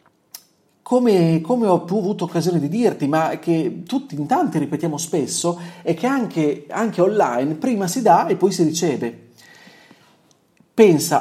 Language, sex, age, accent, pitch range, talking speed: Italian, male, 40-59, native, 145-190 Hz, 145 wpm